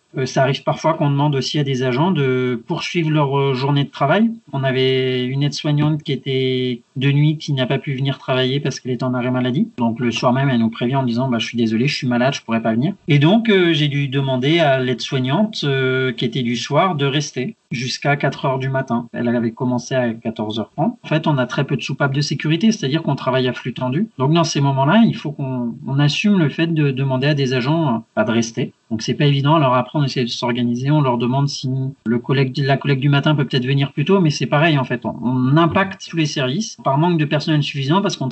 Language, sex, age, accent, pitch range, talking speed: French, male, 30-49, French, 130-155 Hz, 250 wpm